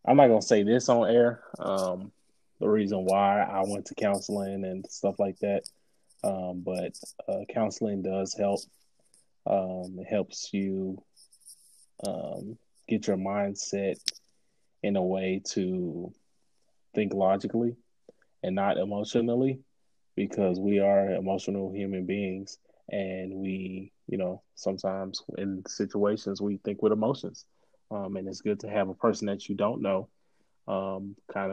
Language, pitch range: English, 95-100 Hz